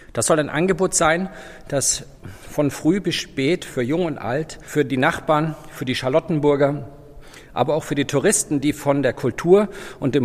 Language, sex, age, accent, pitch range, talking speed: German, male, 50-69, German, 115-150 Hz, 180 wpm